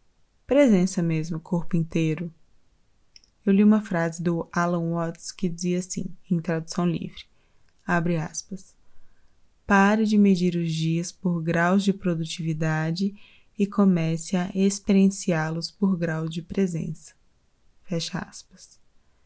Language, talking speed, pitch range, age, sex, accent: Portuguese, 120 wpm, 165-190 Hz, 20-39, female, Brazilian